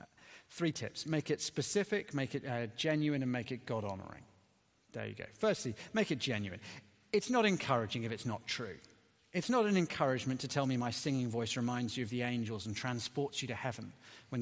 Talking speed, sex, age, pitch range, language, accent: 200 wpm, male, 40-59, 115-160 Hz, English, British